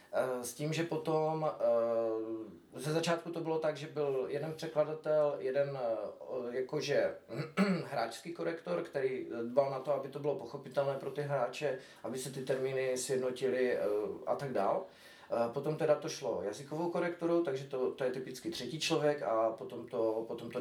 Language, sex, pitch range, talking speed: Czech, male, 130-155 Hz, 160 wpm